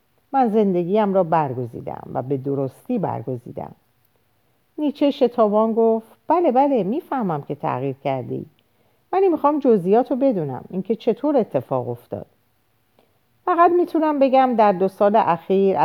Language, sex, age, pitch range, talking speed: Persian, female, 50-69, 140-220 Hz, 130 wpm